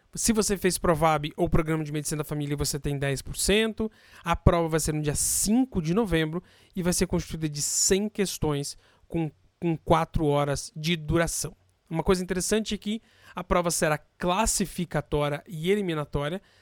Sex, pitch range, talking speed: male, 150-185 Hz, 165 wpm